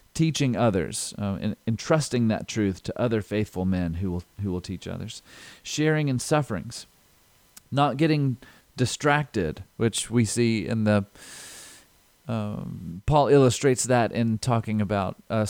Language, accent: English, American